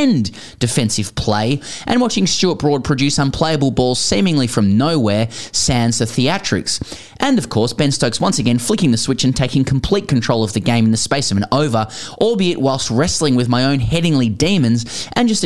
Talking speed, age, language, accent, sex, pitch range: 185 wpm, 10-29, English, Australian, male, 115-160 Hz